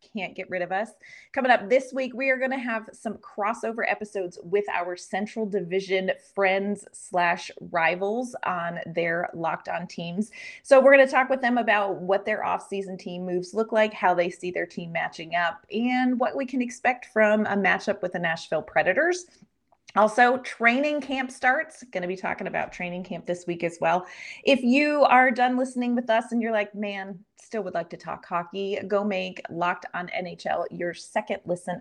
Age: 30-49